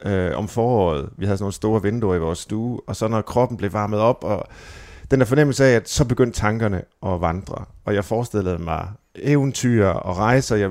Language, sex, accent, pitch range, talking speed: Danish, male, native, 100-130 Hz, 205 wpm